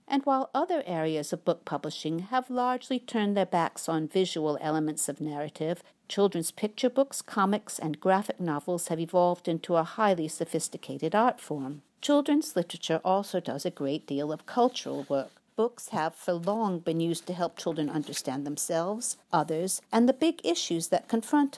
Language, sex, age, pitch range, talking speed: English, female, 50-69, 160-225 Hz, 165 wpm